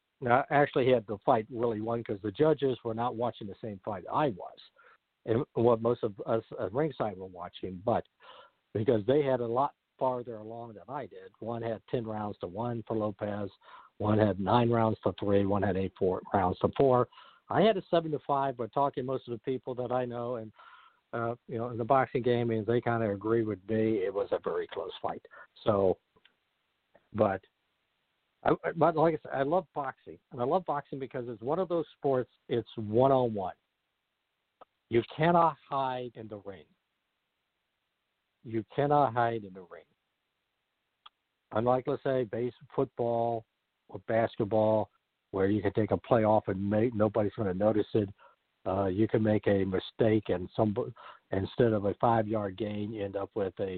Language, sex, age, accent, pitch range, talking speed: English, male, 60-79, American, 105-130 Hz, 185 wpm